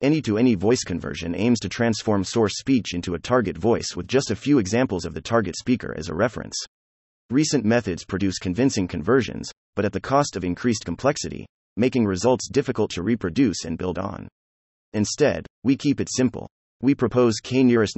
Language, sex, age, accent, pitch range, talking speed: English, male, 30-49, American, 90-125 Hz, 175 wpm